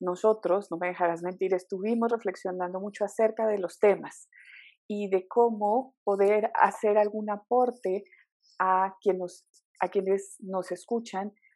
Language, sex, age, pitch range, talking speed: Spanish, female, 30-49, 180-210 Hz, 125 wpm